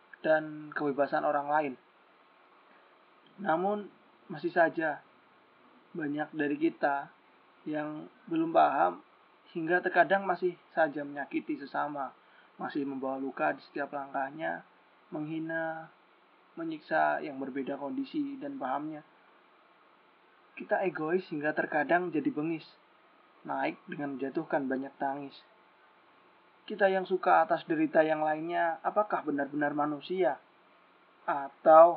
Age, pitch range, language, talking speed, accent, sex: 20-39, 145-180 Hz, Indonesian, 100 wpm, native, male